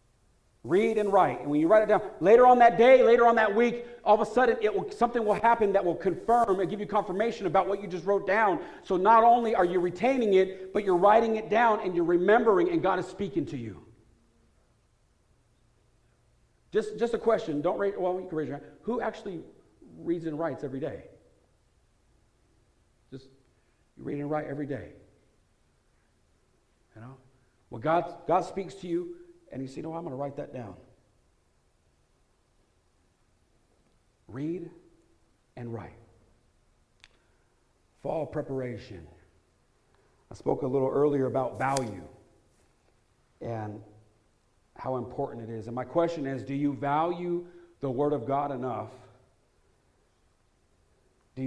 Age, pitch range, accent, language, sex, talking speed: 50-69, 120-200 Hz, American, English, male, 155 wpm